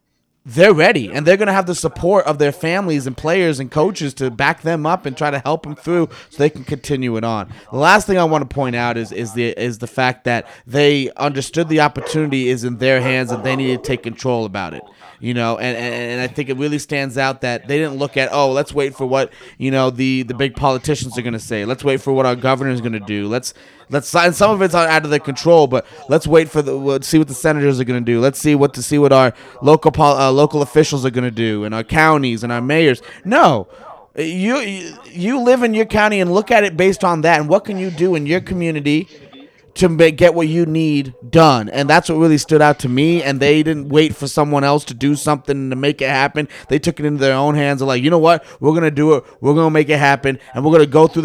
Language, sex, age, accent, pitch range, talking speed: English, male, 30-49, American, 130-160 Hz, 265 wpm